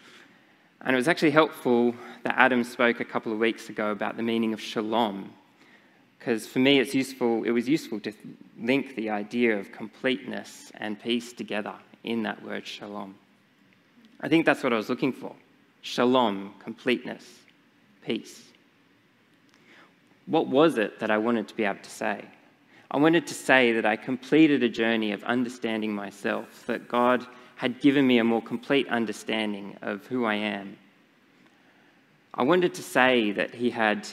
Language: English